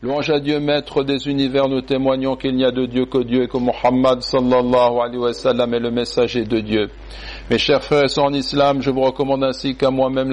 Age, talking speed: 60-79, 220 wpm